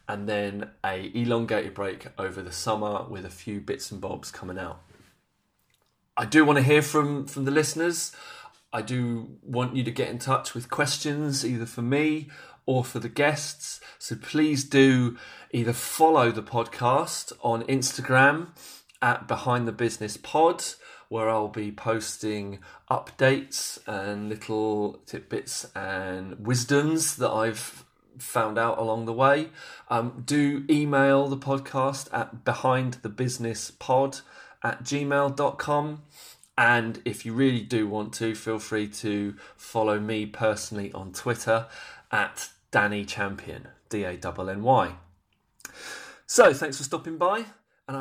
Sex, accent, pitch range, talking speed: male, British, 110-140 Hz, 135 wpm